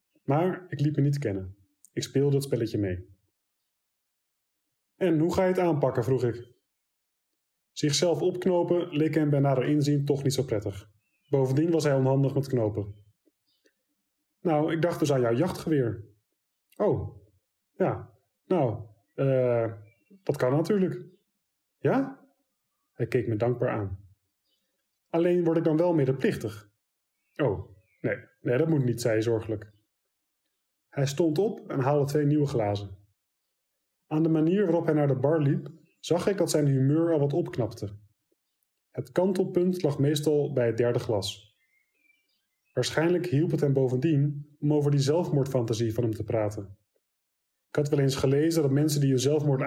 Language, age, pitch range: Dutch, 20-39, 115-165 Hz